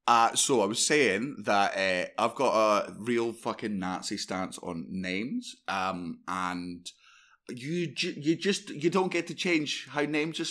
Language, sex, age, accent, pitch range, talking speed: English, male, 20-39, British, 130-200 Hz, 170 wpm